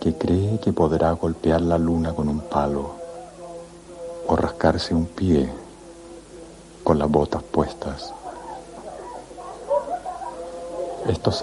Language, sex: Spanish, male